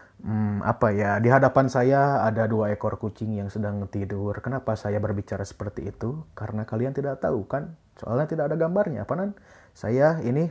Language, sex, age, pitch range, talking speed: Indonesian, male, 20-39, 105-140 Hz, 170 wpm